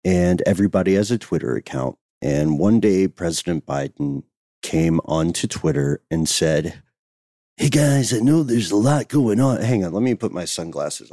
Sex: male